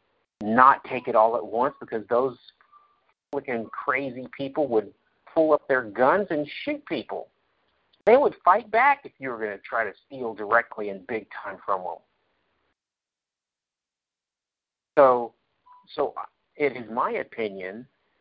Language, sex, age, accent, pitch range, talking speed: English, male, 50-69, American, 115-160 Hz, 140 wpm